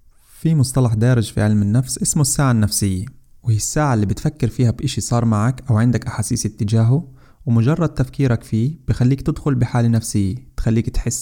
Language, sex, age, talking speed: Arabic, male, 20-39, 160 wpm